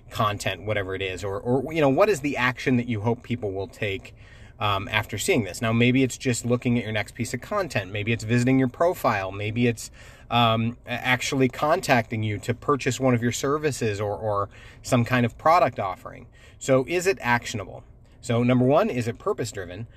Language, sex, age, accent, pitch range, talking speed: English, male, 30-49, American, 105-130 Hz, 205 wpm